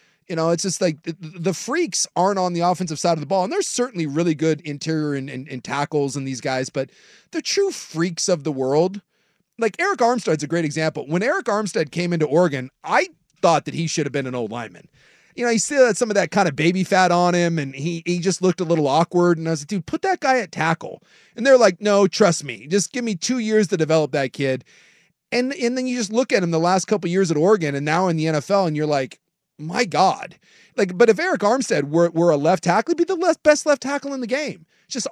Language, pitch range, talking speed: English, 145-200 Hz, 255 wpm